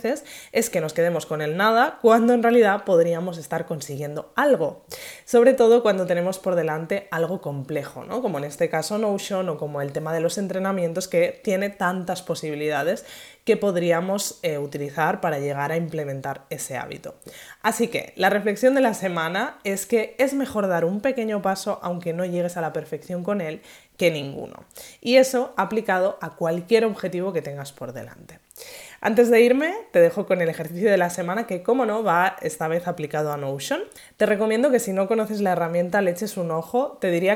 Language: Spanish